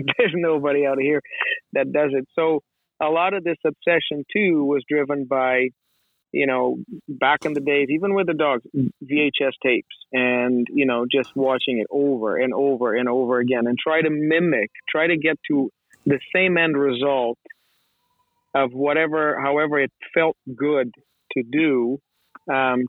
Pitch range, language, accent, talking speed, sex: 125-150 Hz, English, American, 165 wpm, male